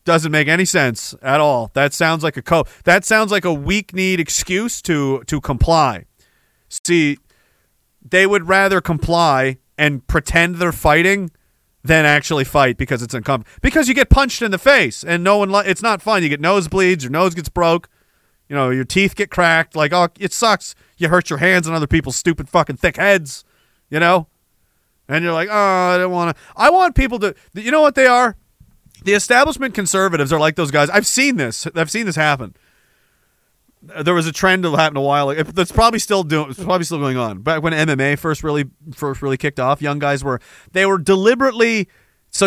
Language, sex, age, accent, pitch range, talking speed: English, male, 30-49, American, 150-190 Hz, 205 wpm